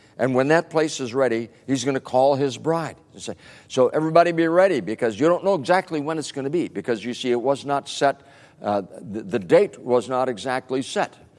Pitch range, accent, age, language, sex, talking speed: 115-150 Hz, American, 60-79, English, male, 225 wpm